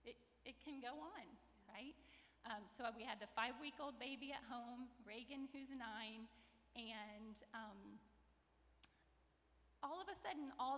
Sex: female